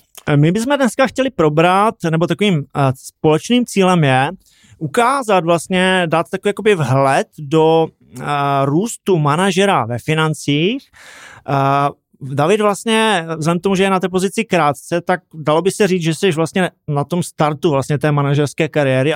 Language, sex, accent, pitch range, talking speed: Czech, male, native, 145-185 Hz, 145 wpm